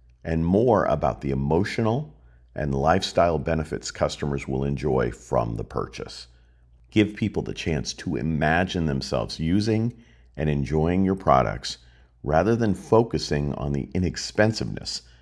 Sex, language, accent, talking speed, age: male, English, American, 125 wpm, 50-69